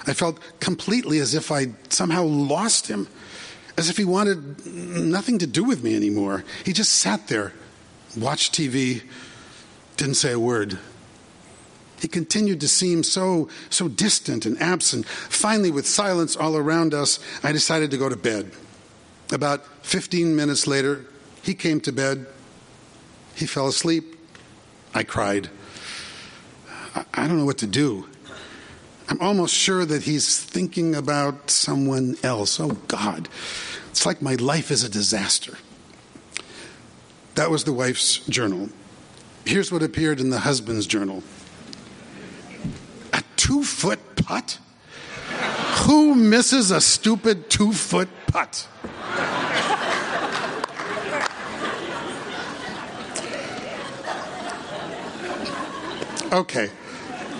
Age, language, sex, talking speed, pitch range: 50-69, English, male, 115 wpm, 135-175 Hz